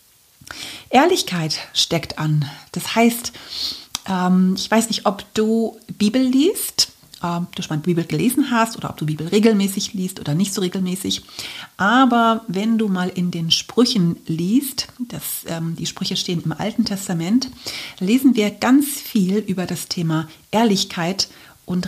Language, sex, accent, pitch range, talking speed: German, female, German, 175-225 Hz, 145 wpm